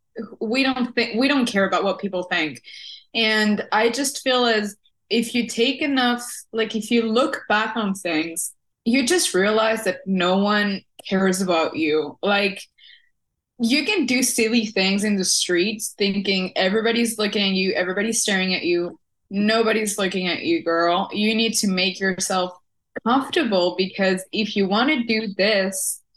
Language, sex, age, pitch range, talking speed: English, female, 20-39, 185-225 Hz, 165 wpm